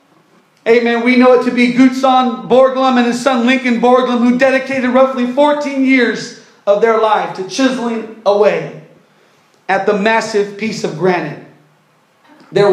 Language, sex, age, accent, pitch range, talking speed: English, male, 40-59, American, 195-255 Hz, 145 wpm